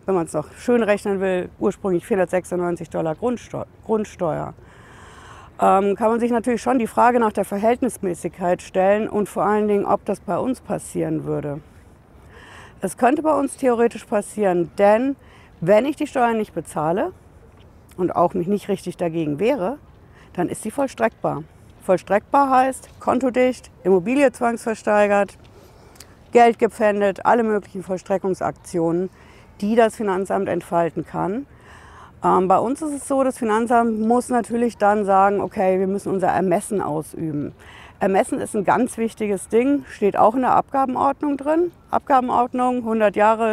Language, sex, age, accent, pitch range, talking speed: German, female, 60-79, German, 185-235 Hz, 145 wpm